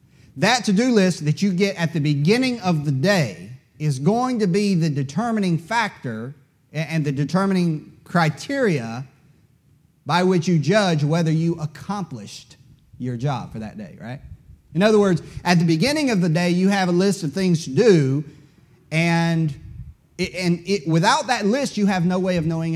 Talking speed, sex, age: 175 wpm, male, 30-49